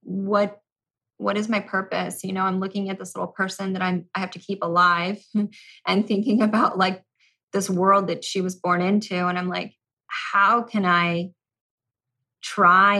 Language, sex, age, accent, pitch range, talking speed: English, female, 20-39, American, 170-195 Hz, 175 wpm